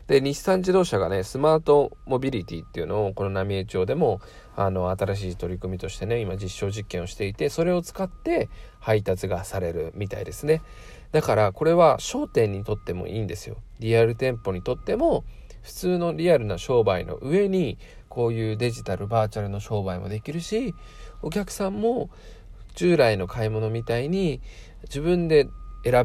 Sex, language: male, Japanese